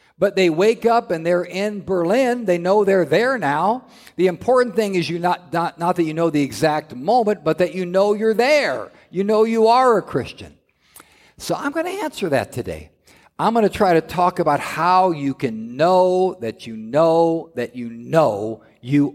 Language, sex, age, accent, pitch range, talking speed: English, male, 50-69, American, 140-210 Hz, 200 wpm